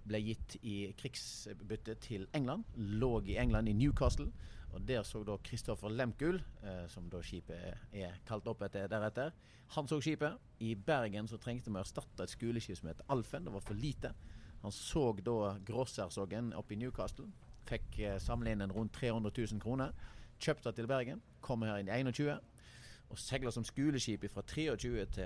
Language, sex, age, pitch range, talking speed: English, male, 30-49, 100-130 Hz, 170 wpm